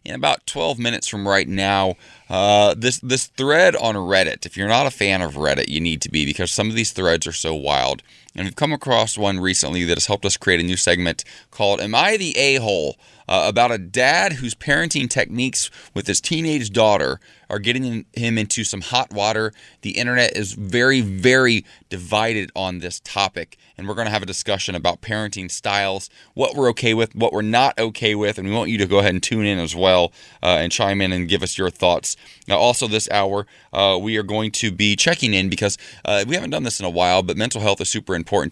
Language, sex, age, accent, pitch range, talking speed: English, male, 20-39, American, 90-110 Hz, 225 wpm